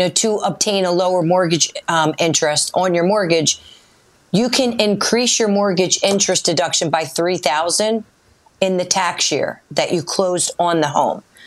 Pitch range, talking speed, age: 170-200 Hz, 150 wpm, 40-59